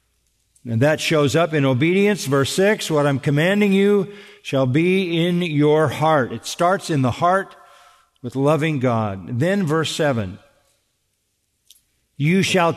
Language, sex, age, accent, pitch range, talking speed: English, male, 50-69, American, 130-185 Hz, 140 wpm